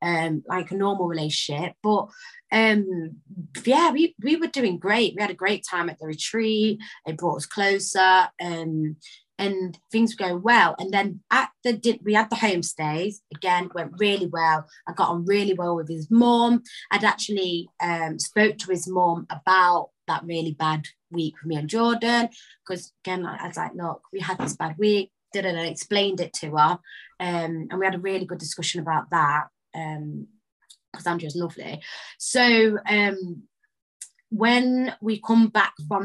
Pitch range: 165-215 Hz